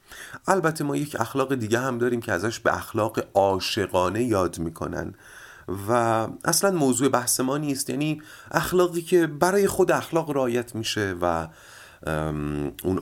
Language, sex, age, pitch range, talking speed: Persian, male, 30-49, 95-160 Hz, 140 wpm